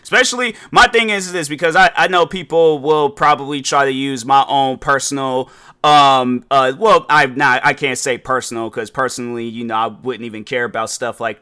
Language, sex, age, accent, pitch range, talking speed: English, male, 30-49, American, 135-165 Hz, 195 wpm